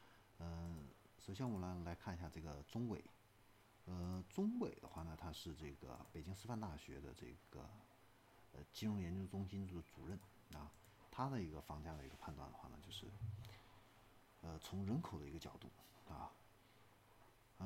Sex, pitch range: male, 80-110 Hz